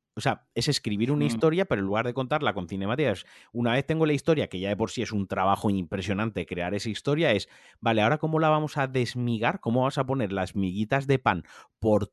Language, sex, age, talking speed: Spanish, male, 30-49, 235 wpm